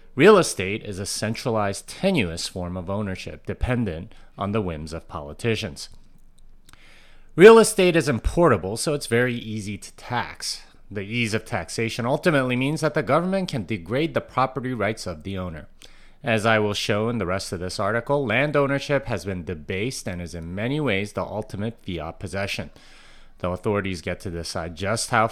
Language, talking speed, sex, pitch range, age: English, 175 wpm, male, 95-135 Hz, 30-49